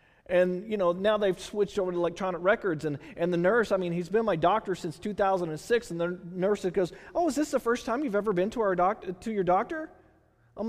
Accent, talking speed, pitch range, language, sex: American, 235 wpm, 170-225 Hz, English, male